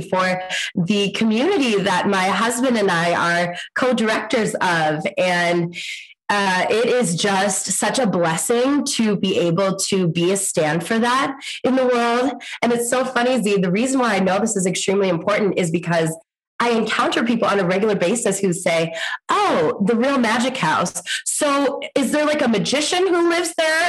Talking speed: 175 wpm